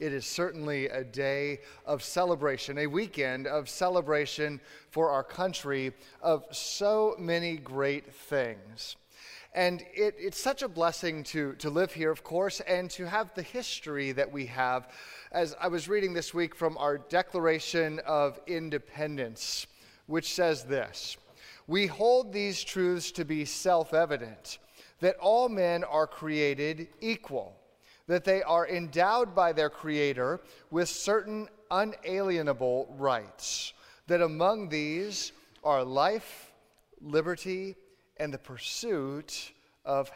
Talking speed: 130 wpm